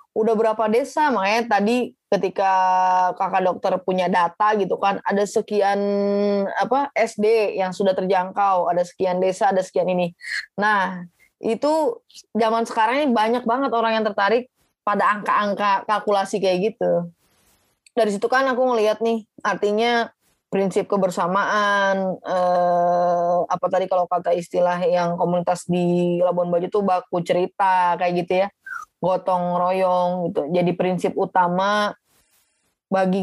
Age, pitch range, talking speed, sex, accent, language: 20-39, 185-225 Hz, 130 wpm, female, native, Indonesian